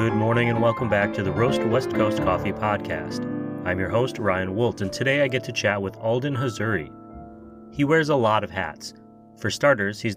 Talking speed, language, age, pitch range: 205 wpm, English, 30-49, 95-120 Hz